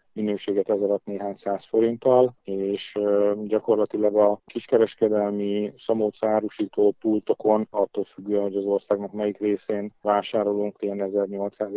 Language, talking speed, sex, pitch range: Hungarian, 115 wpm, male, 100-105 Hz